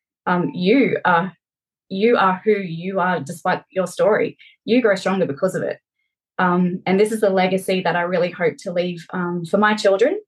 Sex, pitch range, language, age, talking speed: female, 185-215 Hz, English, 20-39, 185 wpm